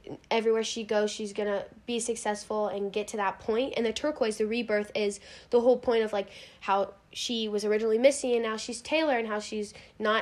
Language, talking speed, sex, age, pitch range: English, 210 wpm, female, 10-29, 200-225 Hz